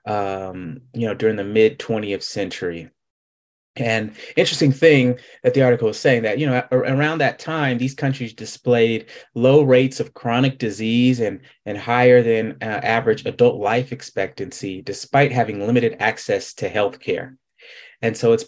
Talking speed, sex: 155 wpm, male